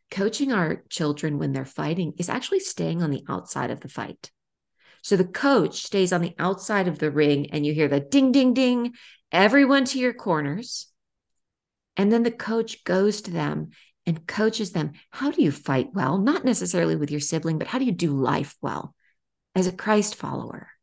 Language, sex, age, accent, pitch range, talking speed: English, female, 40-59, American, 170-230 Hz, 195 wpm